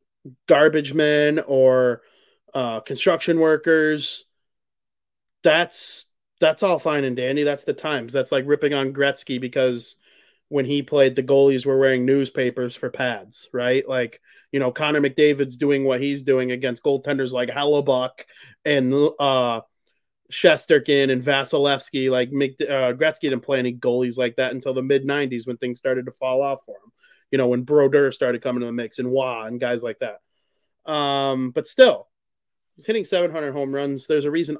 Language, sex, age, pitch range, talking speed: English, male, 30-49, 125-150 Hz, 165 wpm